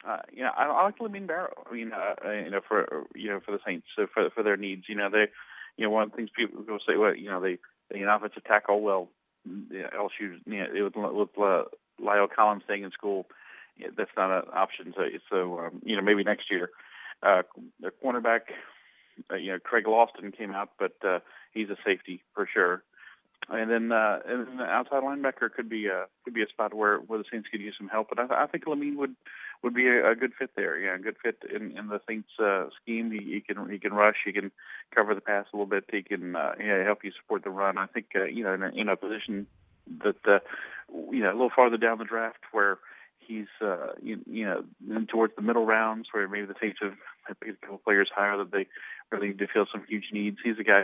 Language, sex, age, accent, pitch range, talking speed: English, male, 40-59, American, 100-115 Hz, 245 wpm